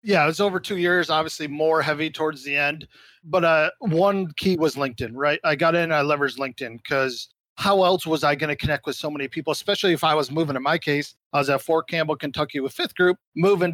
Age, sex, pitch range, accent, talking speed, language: 40-59, male, 145-180 Hz, American, 240 wpm, English